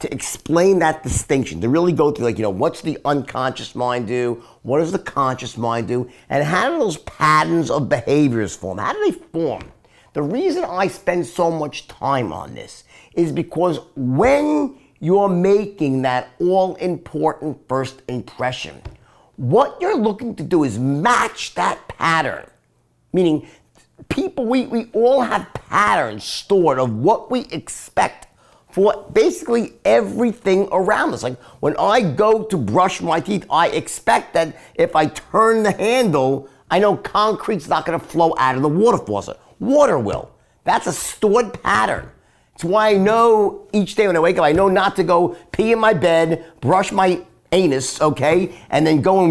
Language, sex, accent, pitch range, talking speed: English, male, American, 140-215 Hz, 170 wpm